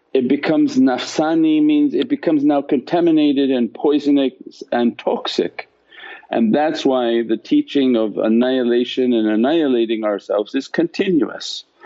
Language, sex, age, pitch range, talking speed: English, male, 50-69, 120-165 Hz, 120 wpm